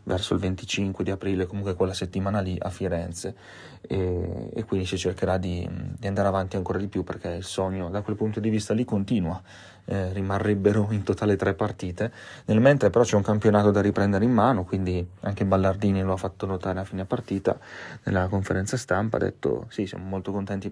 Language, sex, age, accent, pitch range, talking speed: Italian, male, 30-49, native, 95-110 Hz, 195 wpm